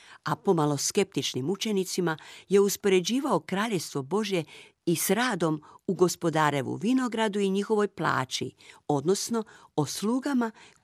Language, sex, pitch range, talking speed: Croatian, female, 155-200 Hz, 110 wpm